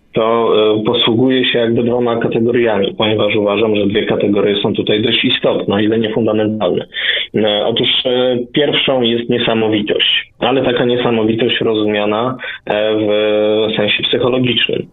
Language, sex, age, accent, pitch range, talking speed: Polish, male, 20-39, native, 105-120 Hz, 115 wpm